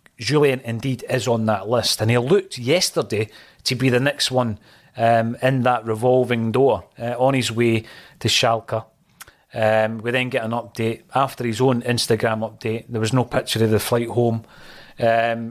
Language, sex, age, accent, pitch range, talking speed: English, male, 30-49, British, 115-135 Hz, 180 wpm